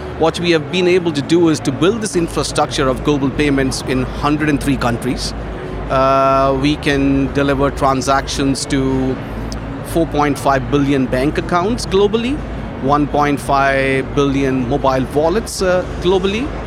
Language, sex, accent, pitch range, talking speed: English, male, Indian, 130-155 Hz, 125 wpm